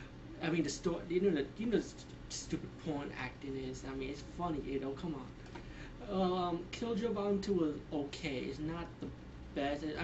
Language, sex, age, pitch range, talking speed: English, male, 20-39, 130-155 Hz, 190 wpm